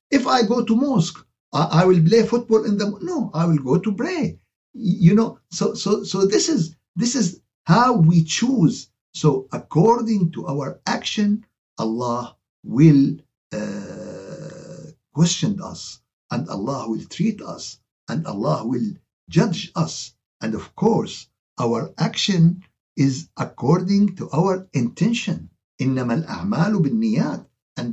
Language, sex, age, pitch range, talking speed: Arabic, male, 60-79, 160-210 Hz, 130 wpm